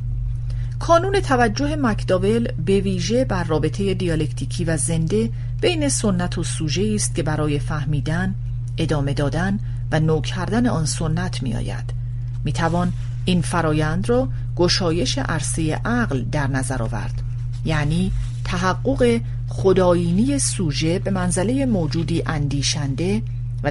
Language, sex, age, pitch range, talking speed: Persian, female, 40-59, 120-145 Hz, 110 wpm